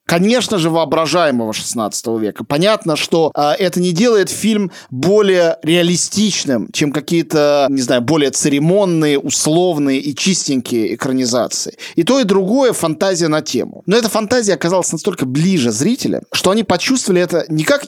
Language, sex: Russian, male